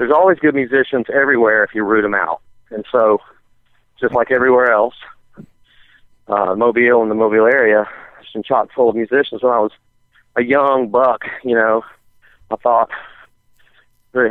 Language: English